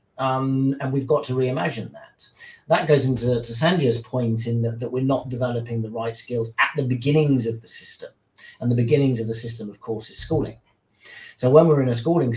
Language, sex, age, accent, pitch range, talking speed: English, male, 40-59, British, 115-140 Hz, 210 wpm